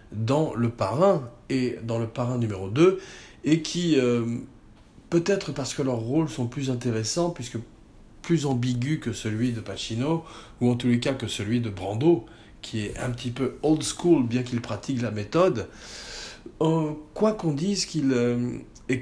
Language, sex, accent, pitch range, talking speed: French, male, French, 115-155 Hz, 175 wpm